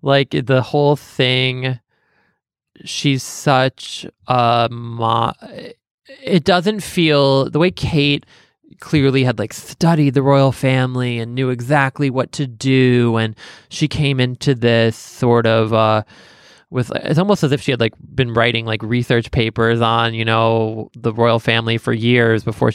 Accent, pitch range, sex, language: American, 115-150 Hz, male, English